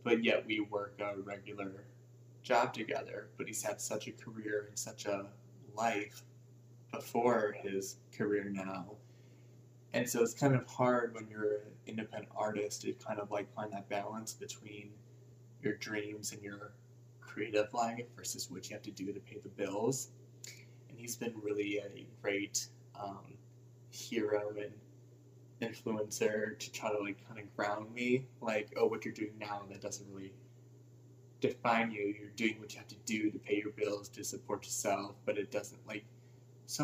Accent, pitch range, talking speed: American, 105-120 Hz, 170 wpm